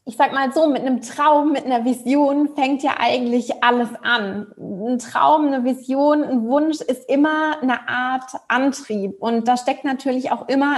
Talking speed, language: 180 wpm, German